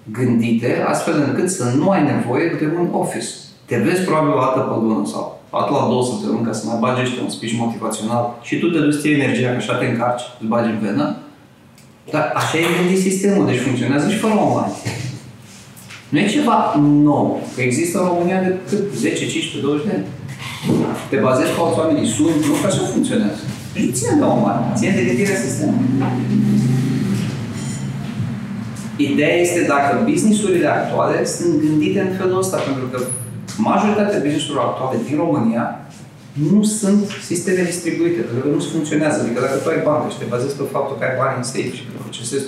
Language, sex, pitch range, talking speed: Romanian, male, 125-180 Hz, 185 wpm